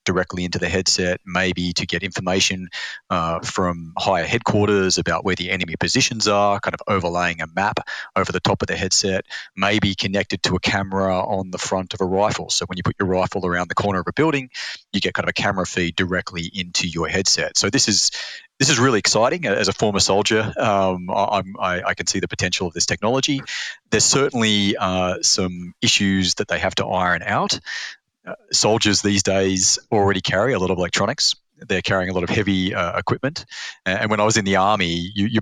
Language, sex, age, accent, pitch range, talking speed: English, male, 30-49, Australian, 90-100 Hz, 210 wpm